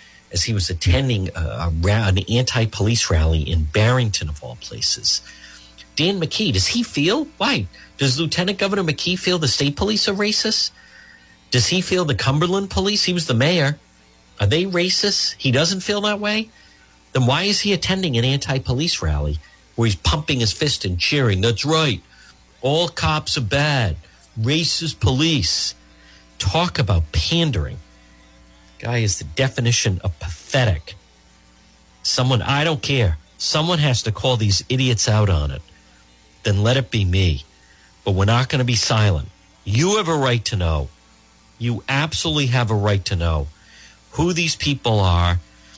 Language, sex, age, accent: English, male, 50-69, American